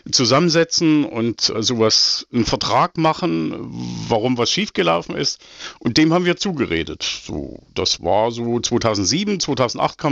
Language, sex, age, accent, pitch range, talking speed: German, male, 50-69, German, 115-160 Hz, 130 wpm